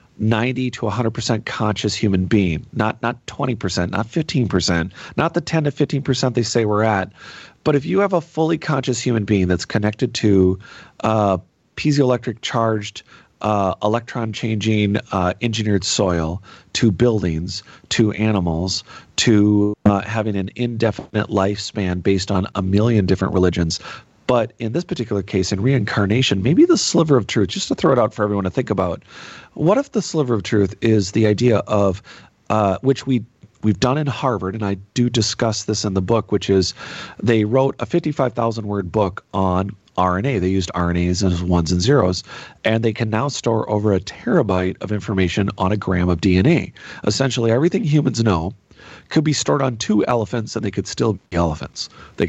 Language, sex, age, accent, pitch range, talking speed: English, male, 40-59, American, 95-120 Hz, 180 wpm